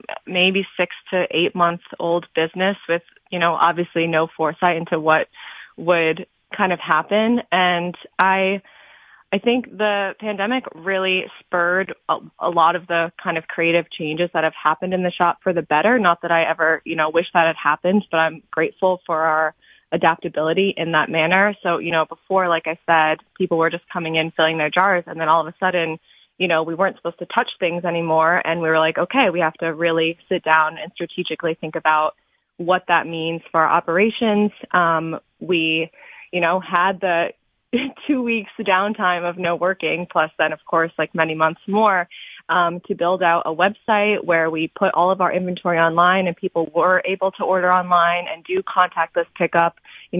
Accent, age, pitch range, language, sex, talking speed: American, 20-39, 165-185 Hz, English, female, 195 wpm